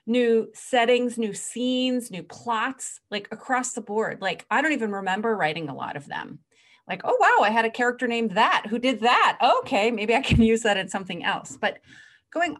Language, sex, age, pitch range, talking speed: English, female, 30-49, 195-250 Hz, 205 wpm